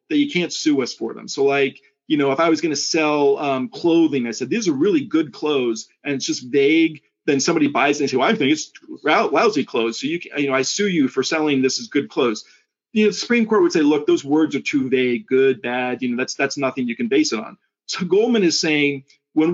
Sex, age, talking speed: male, 40-59, 260 wpm